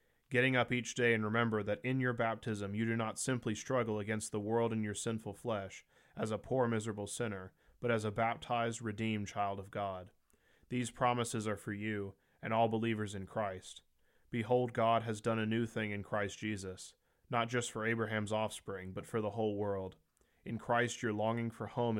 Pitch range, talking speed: 100-115 Hz, 195 wpm